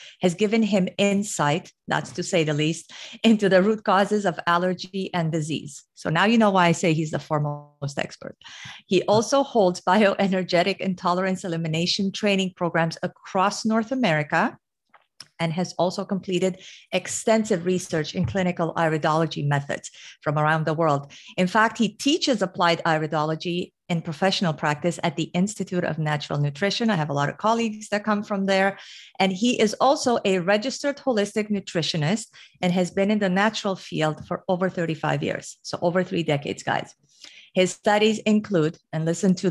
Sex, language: female, English